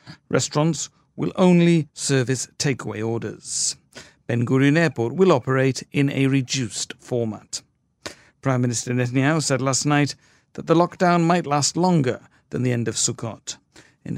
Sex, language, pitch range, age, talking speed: male, English, 120-155 Hz, 50-69, 140 wpm